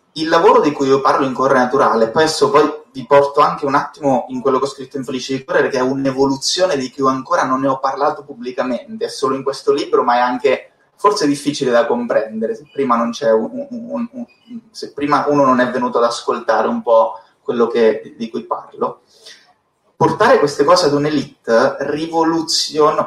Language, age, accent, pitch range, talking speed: Italian, 30-49, native, 130-175 Hz, 205 wpm